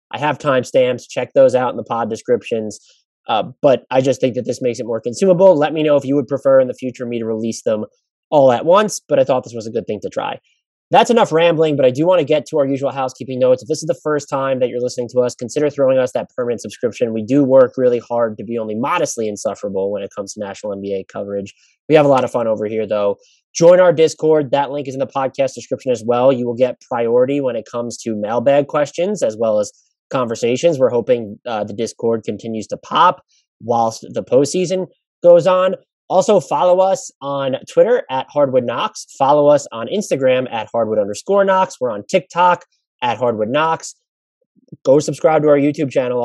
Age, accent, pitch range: 20-39, American, 120-170 Hz